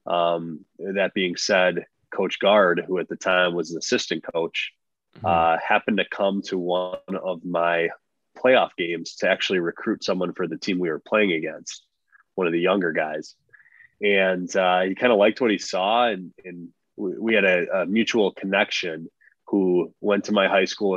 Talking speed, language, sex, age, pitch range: 180 wpm, English, male, 20-39, 85-95 Hz